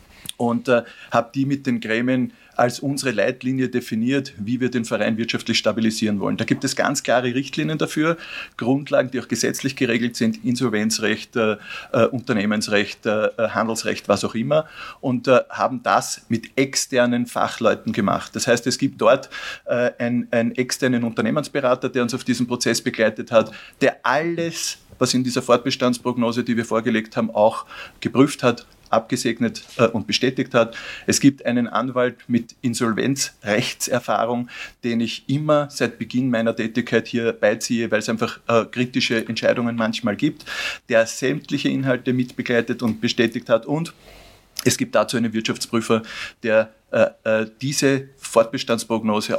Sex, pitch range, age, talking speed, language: male, 115-130 Hz, 50-69, 150 wpm, German